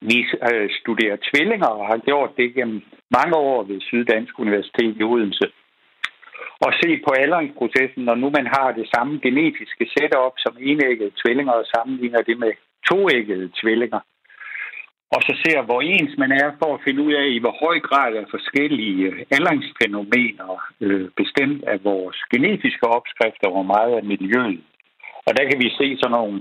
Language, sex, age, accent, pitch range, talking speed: Danish, male, 60-79, native, 105-135 Hz, 165 wpm